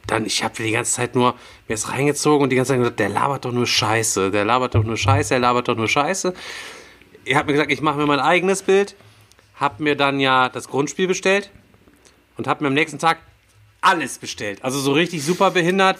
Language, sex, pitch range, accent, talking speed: German, male, 120-155 Hz, German, 230 wpm